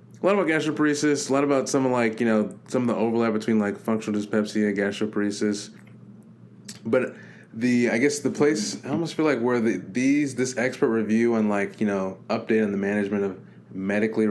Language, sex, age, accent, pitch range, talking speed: English, male, 20-39, American, 100-125 Hz, 200 wpm